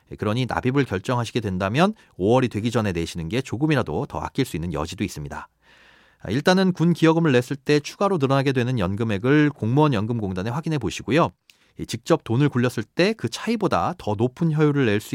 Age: 40-59